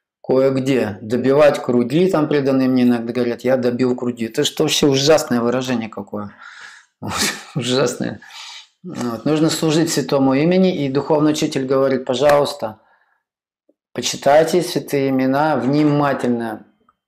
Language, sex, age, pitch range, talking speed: Russian, male, 20-39, 125-150 Hz, 110 wpm